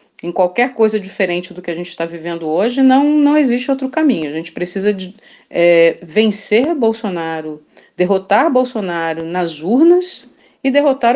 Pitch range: 175-270 Hz